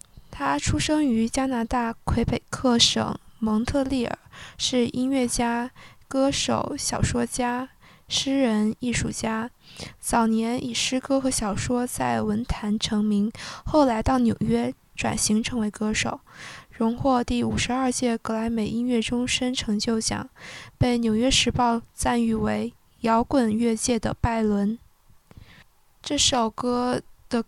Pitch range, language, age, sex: 220-250 Hz, Chinese, 10-29, female